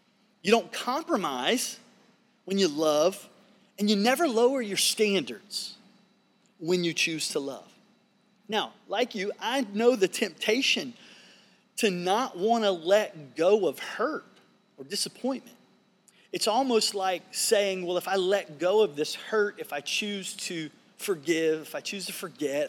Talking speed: 150 wpm